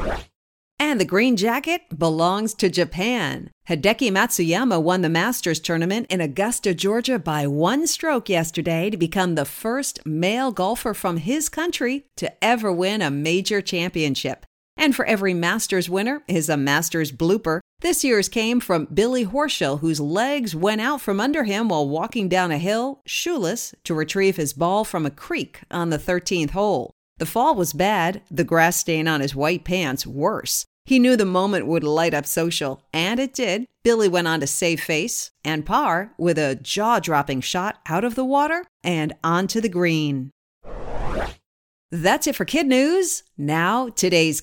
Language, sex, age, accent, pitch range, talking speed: English, female, 50-69, American, 160-235 Hz, 165 wpm